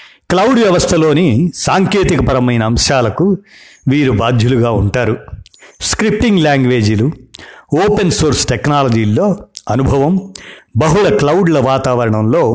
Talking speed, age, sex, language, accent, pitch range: 80 wpm, 50-69, male, Telugu, native, 115-160 Hz